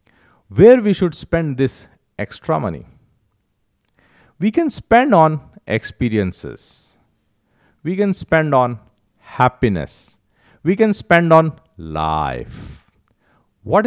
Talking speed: 100 wpm